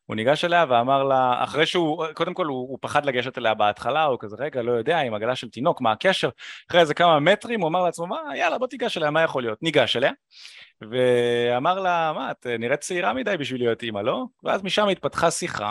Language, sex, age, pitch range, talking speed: Hebrew, male, 20-39, 135-190 Hz, 220 wpm